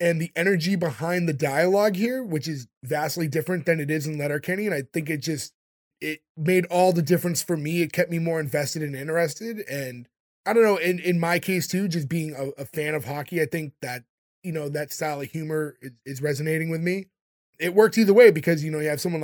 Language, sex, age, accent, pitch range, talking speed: English, male, 20-39, American, 150-180 Hz, 235 wpm